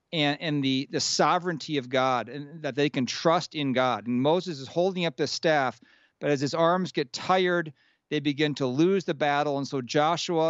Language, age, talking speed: English, 40-59, 205 wpm